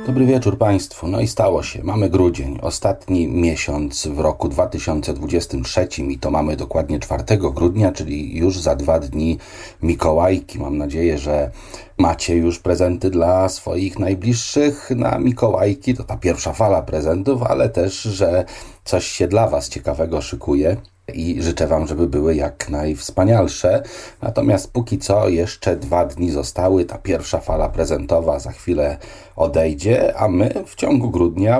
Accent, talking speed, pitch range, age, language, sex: native, 145 wpm, 75-95 Hz, 40-59, Polish, male